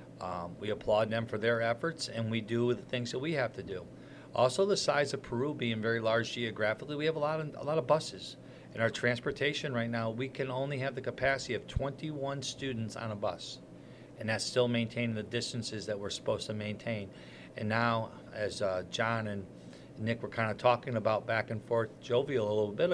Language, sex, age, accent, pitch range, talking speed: English, male, 40-59, American, 110-130 Hz, 215 wpm